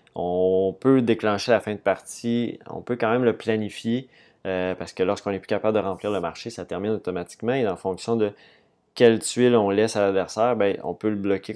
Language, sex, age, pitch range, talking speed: French, male, 20-39, 95-110 Hz, 220 wpm